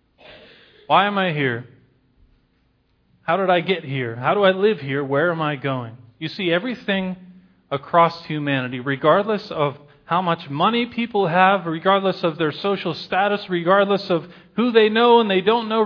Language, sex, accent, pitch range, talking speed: English, male, American, 140-200 Hz, 165 wpm